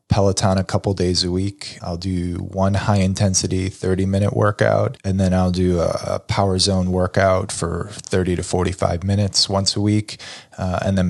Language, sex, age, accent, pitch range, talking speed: English, male, 20-39, American, 90-105 Hz, 180 wpm